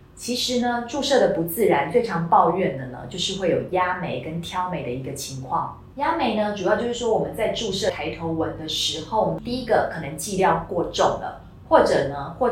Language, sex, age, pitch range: Chinese, female, 30-49, 160-230 Hz